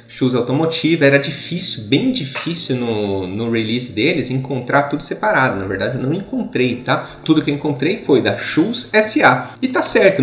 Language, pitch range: English, 125-165 Hz